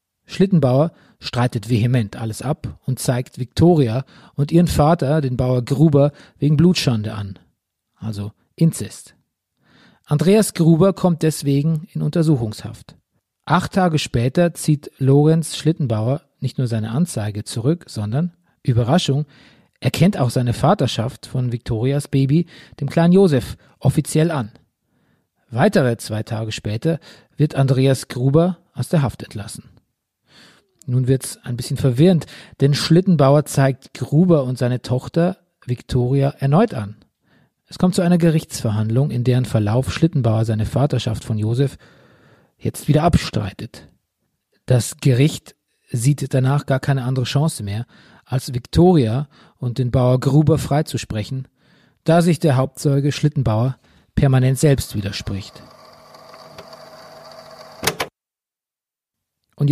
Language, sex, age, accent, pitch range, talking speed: German, male, 40-59, German, 125-155 Hz, 120 wpm